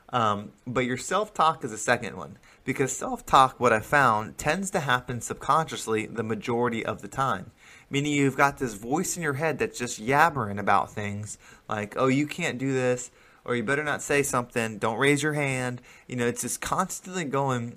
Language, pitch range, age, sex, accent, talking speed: English, 110-140 Hz, 20-39, male, American, 195 wpm